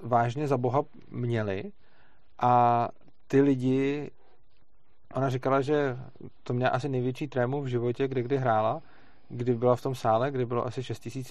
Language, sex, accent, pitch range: Czech, male, native, 115-130 Hz